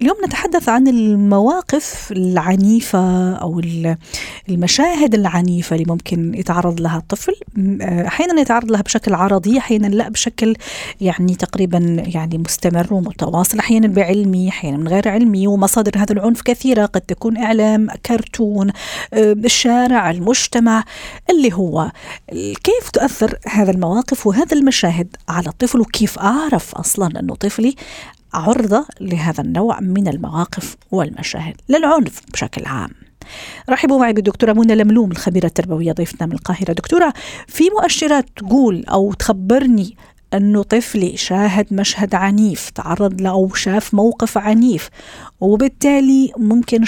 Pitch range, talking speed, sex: 185-235 Hz, 120 wpm, female